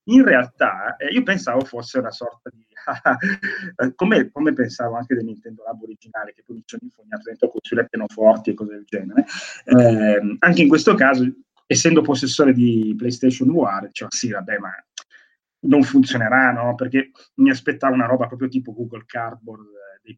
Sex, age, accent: male, 30-49, native